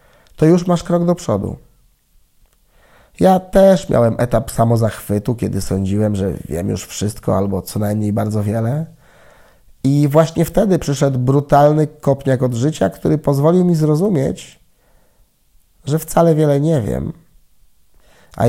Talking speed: 130 wpm